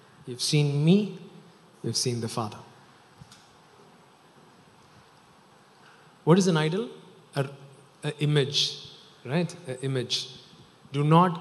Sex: male